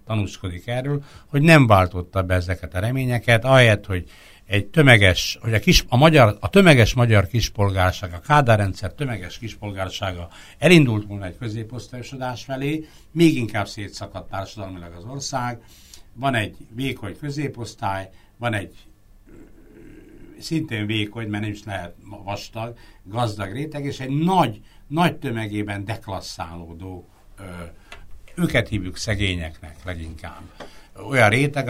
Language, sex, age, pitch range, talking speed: Hungarian, male, 60-79, 95-125 Hz, 125 wpm